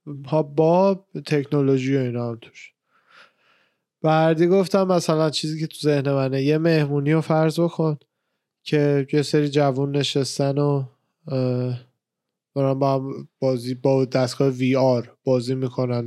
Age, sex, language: 20-39, male, Persian